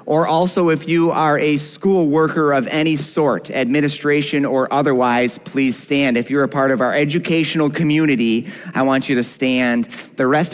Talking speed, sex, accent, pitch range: 175 wpm, male, American, 110-140 Hz